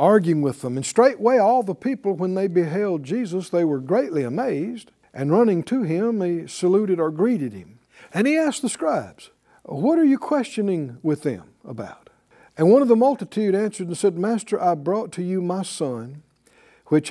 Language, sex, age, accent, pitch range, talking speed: English, male, 60-79, American, 150-215 Hz, 185 wpm